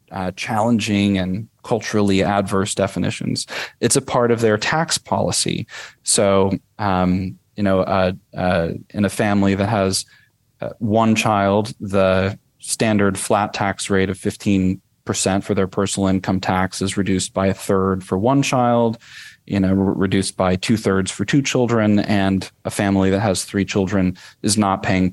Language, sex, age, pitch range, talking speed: English, male, 30-49, 95-110 Hz, 155 wpm